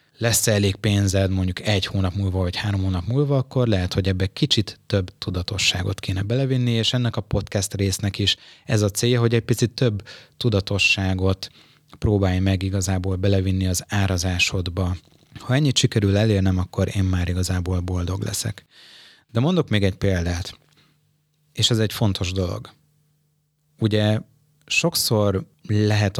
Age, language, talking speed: 30-49, Hungarian, 145 wpm